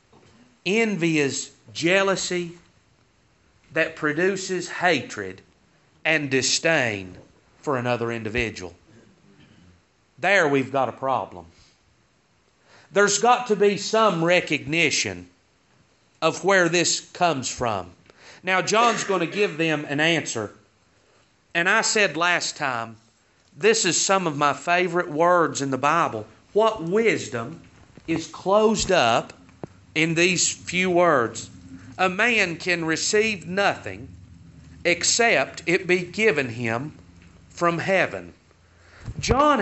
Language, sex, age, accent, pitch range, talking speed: English, male, 40-59, American, 135-215 Hz, 110 wpm